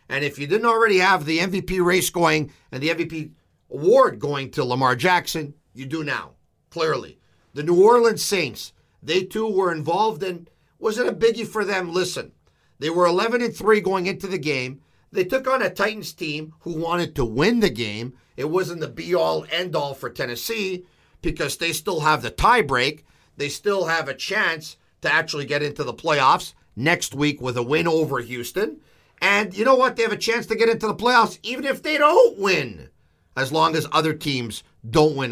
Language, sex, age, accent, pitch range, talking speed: English, male, 50-69, American, 140-185 Hz, 190 wpm